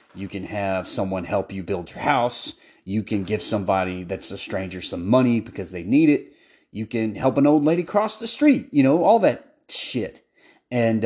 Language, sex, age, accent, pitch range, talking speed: English, male, 30-49, American, 105-160 Hz, 200 wpm